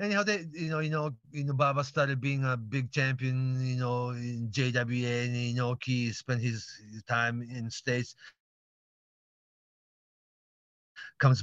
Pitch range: 110-135 Hz